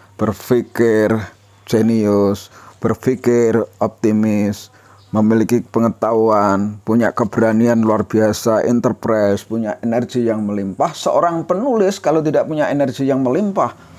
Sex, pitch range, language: male, 100-120 Hz, Indonesian